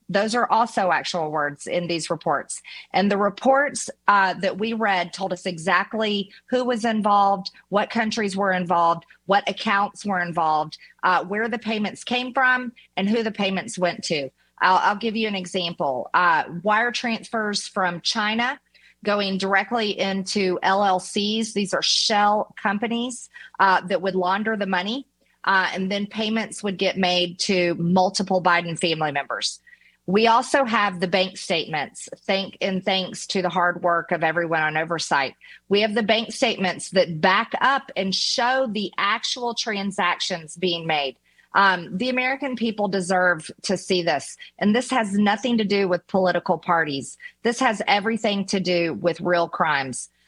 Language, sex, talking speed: English, female, 160 wpm